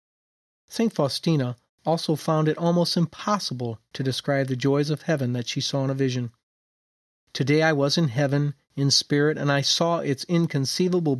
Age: 40-59